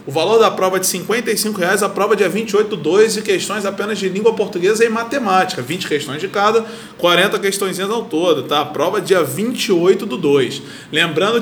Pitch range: 190-235 Hz